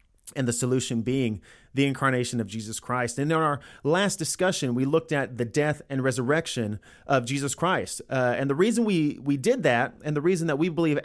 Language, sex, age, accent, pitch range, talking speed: English, male, 30-49, American, 115-150 Hz, 205 wpm